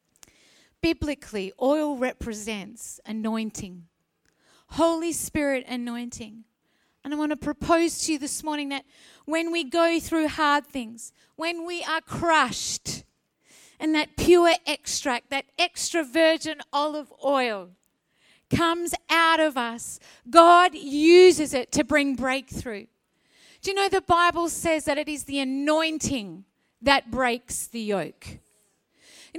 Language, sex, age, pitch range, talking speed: English, female, 30-49, 280-375 Hz, 125 wpm